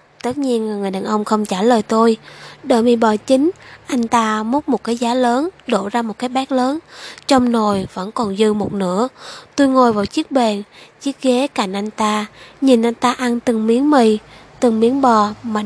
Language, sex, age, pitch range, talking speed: Vietnamese, female, 20-39, 215-260 Hz, 205 wpm